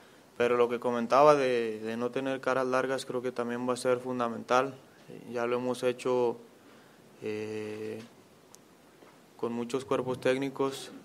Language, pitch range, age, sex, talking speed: Spanish, 115-125 Hz, 20-39, male, 140 wpm